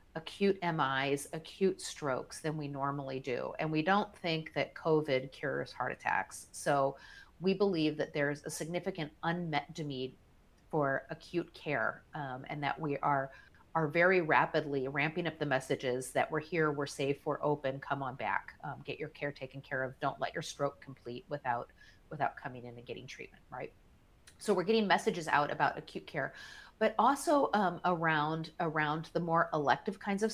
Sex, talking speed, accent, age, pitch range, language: female, 175 wpm, American, 30-49, 140-170 Hz, English